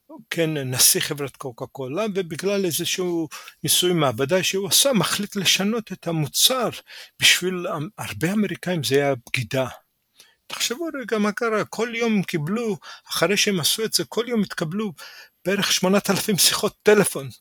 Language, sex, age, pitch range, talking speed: Hebrew, male, 50-69, 165-215 Hz, 140 wpm